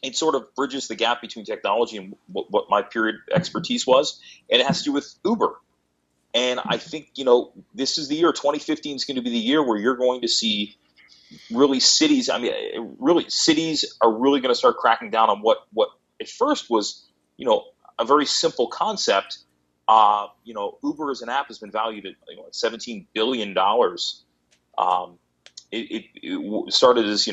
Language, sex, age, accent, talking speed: English, male, 30-49, American, 195 wpm